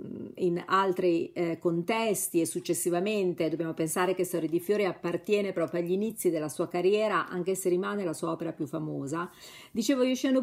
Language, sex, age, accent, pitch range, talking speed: Italian, female, 40-59, native, 170-210 Hz, 165 wpm